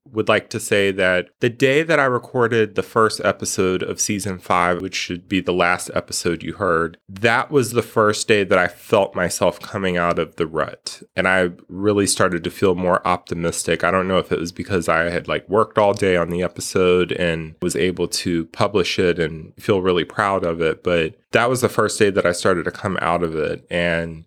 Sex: male